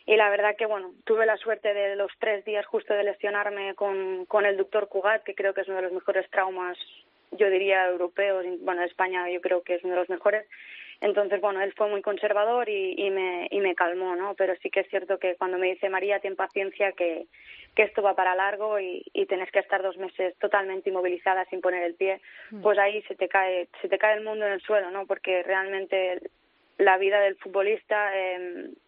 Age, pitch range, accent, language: 20-39, 190-210 Hz, Spanish, Spanish